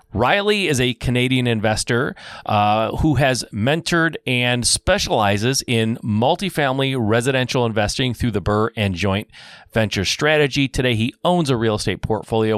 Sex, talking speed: male, 140 wpm